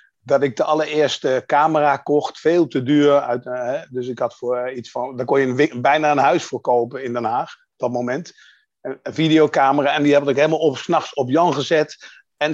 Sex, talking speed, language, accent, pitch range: male, 230 wpm, Dutch, Dutch, 135-170 Hz